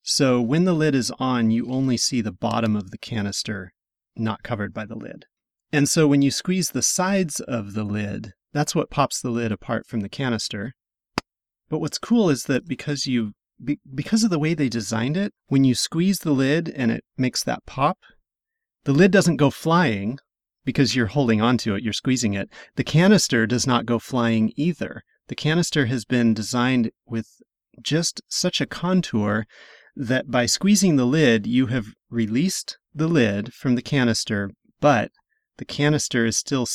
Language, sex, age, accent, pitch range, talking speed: English, male, 30-49, American, 110-145 Hz, 180 wpm